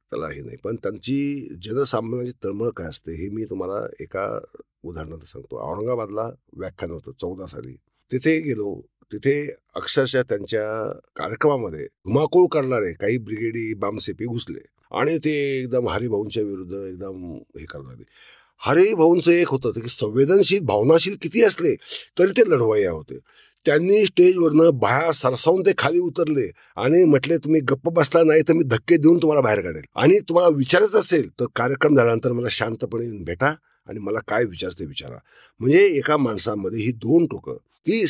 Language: Marathi